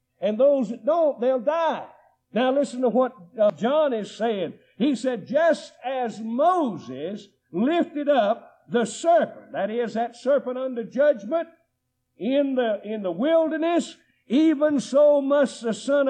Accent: American